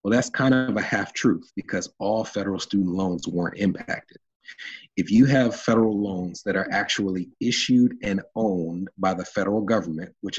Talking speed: 175 wpm